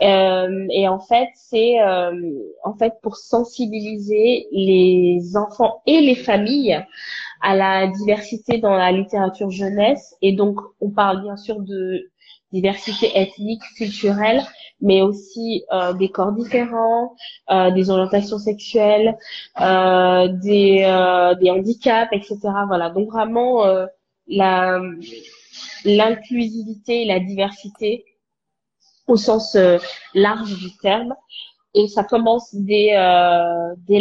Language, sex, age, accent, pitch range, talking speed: French, female, 20-39, French, 190-225 Hz, 120 wpm